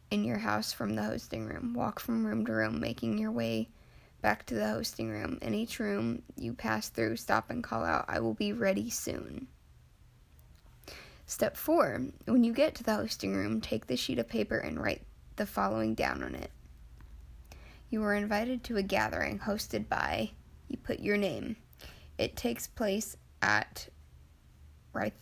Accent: American